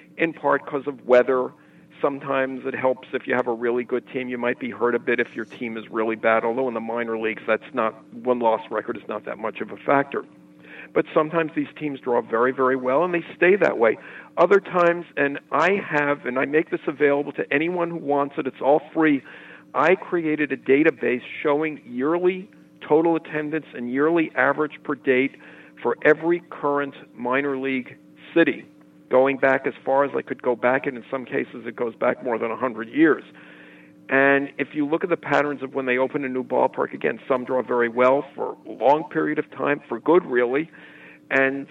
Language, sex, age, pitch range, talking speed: English, male, 50-69, 125-155 Hz, 205 wpm